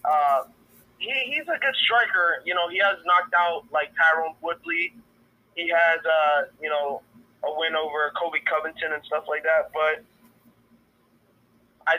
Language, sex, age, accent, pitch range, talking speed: English, male, 20-39, American, 150-200 Hz, 155 wpm